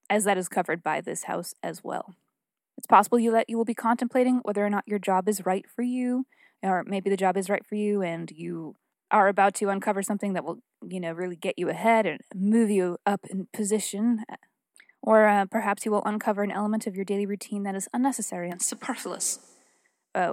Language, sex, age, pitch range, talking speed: English, female, 20-39, 195-255 Hz, 215 wpm